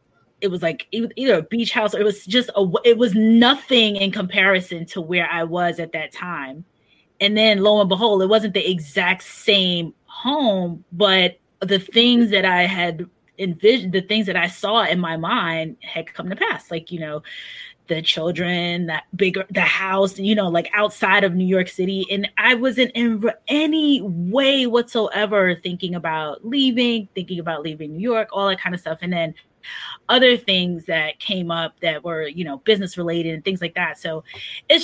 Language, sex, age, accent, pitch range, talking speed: English, female, 20-39, American, 175-220 Hz, 190 wpm